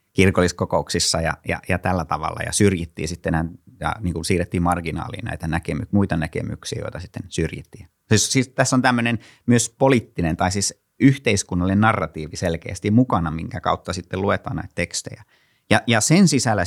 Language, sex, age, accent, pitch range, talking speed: Finnish, male, 30-49, native, 85-110 Hz, 160 wpm